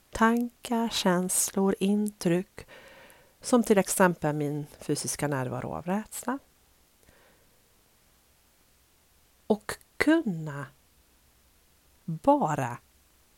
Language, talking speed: English, 60 wpm